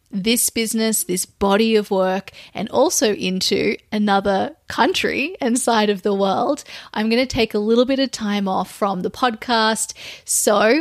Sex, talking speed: female, 165 wpm